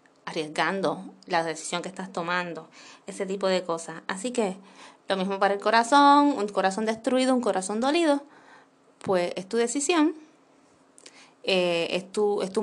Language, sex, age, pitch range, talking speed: Spanish, female, 20-39, 180-245 Hz, 145 wpm